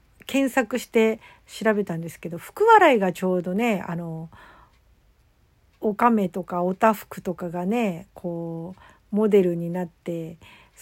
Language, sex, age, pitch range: Japanese, female, 50-69, 175-225 Hz